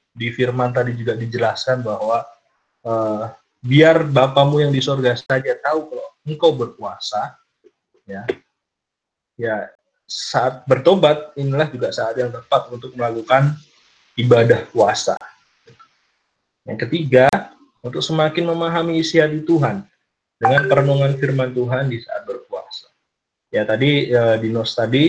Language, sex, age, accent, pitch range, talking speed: Indonesian, male, 20-39, native, 120-150 Hz, 120 wpm